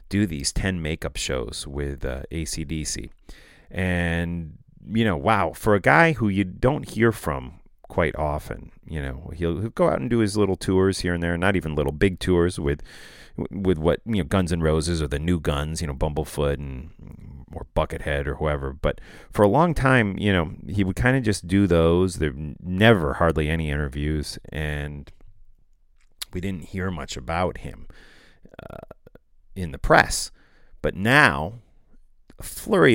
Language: English